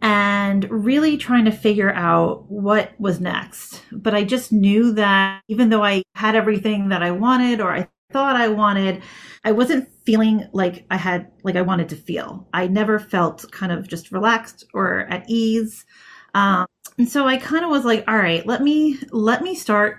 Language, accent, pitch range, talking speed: English, American, 185-230 Hz, 190 wpm